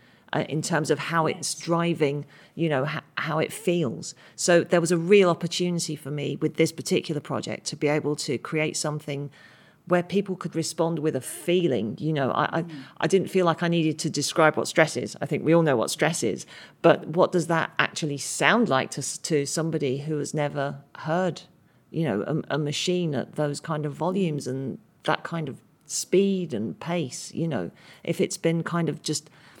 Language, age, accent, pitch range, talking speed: English, 40-59, British, 145-170 Hz, 205 wpm